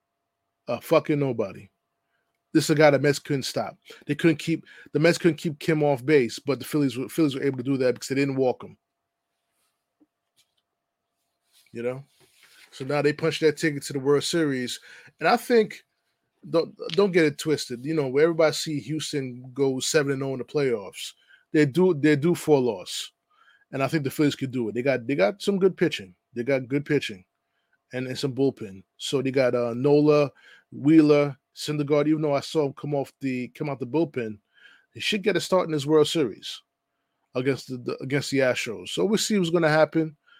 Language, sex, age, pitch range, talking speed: English, male, 20-39, 135-160 Hz, 205 wpm